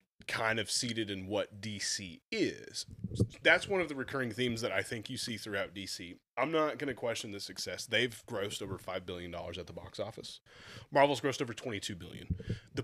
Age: 30-49